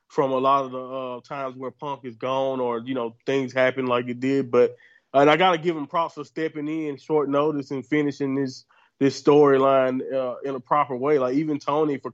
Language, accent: English, American